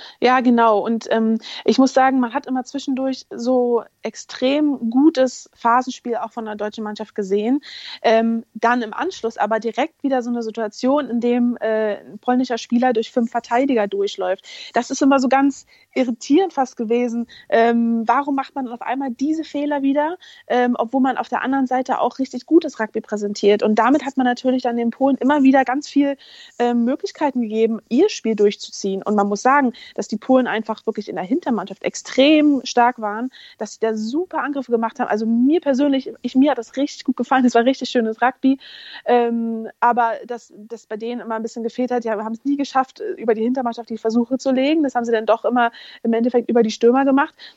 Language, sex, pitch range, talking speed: German, female, 225-265 Hz, 200 wpm